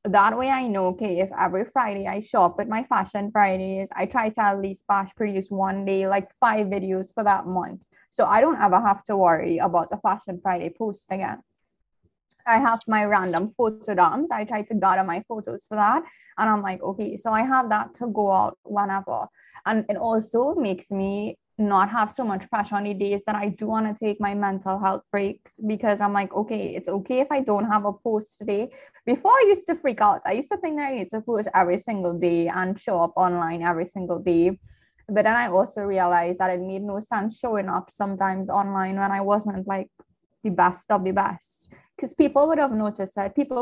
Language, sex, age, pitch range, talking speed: English, female, 20-39, 195-220 Hz, 220 wpm